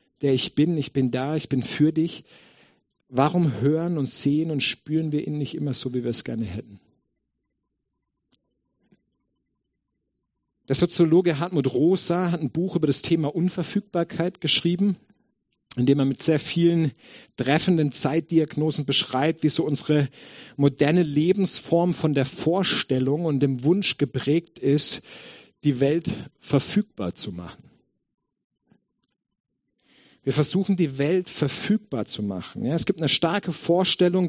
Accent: German